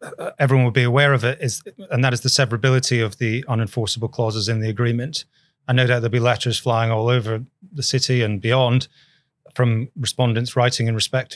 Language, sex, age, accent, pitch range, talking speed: English, male, 30-49, British, 120-140 Hz, 200 wpm